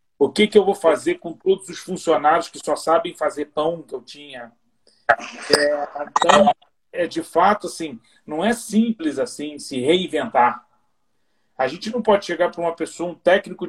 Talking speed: 175 wpm